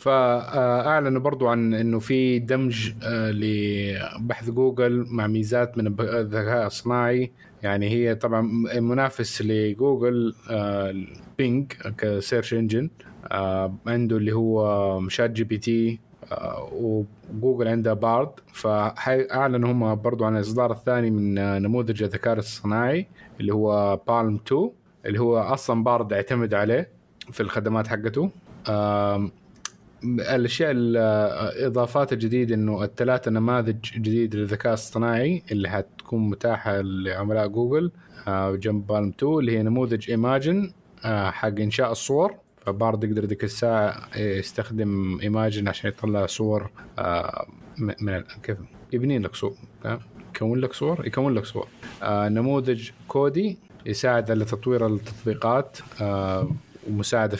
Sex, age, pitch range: male, 20-39, 105-120 Hz